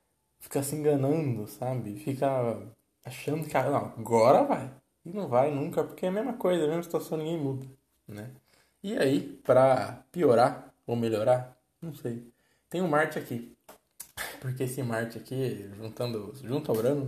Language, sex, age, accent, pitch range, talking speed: Portuguese, male, 20-39, Brazilian, 115-140 Hz, 160 wpm